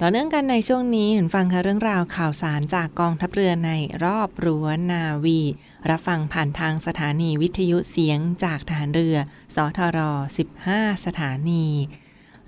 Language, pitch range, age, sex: Thai, 160-185 Hz, 20-39, female